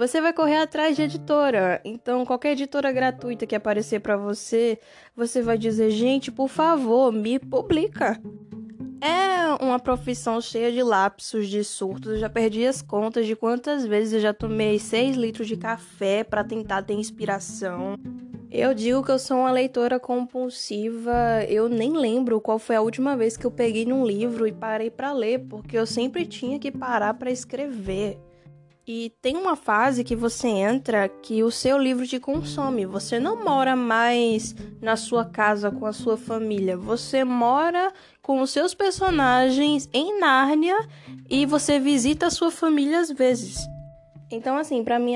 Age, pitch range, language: 10-29, 215-260 Hz, Portuguese